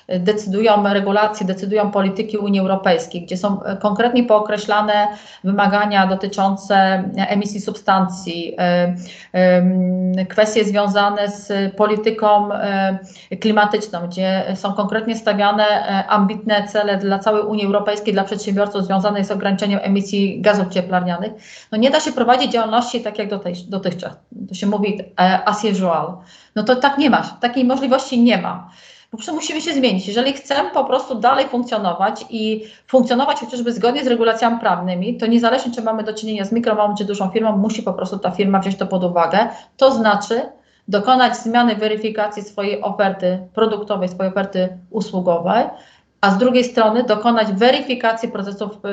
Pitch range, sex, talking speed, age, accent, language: 195-225 Hz, female, 140 wpm, 40-59, native, Polish